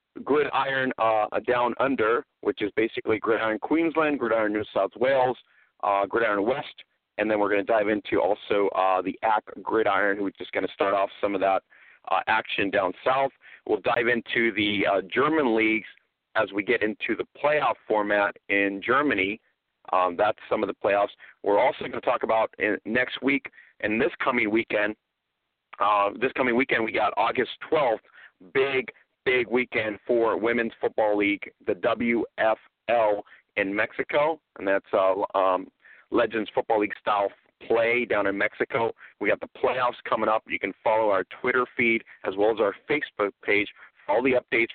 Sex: male